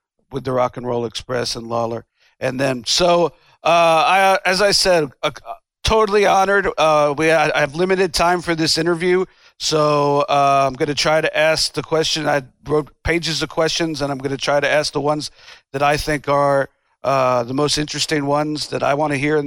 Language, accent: English, American